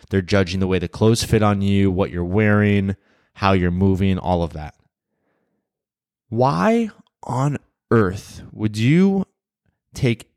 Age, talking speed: 20-39, 140 wpm